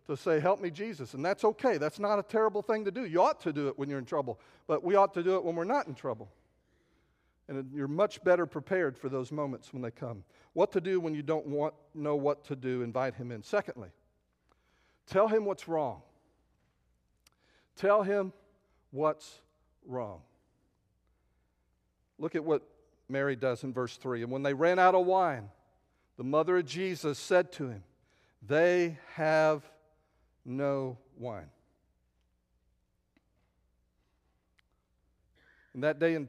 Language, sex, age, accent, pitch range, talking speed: English, male, 50-69, American, 130-170 Hz, 165 wpm